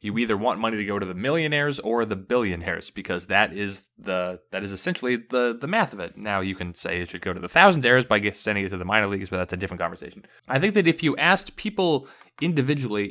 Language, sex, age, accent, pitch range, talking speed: English, male, 20-39, American, 100-140 Hz, 245 wpm